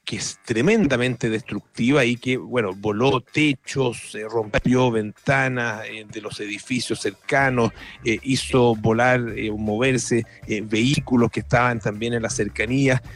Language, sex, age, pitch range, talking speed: Spanish, male, 40-59, 105-125 Hz, 140 wpm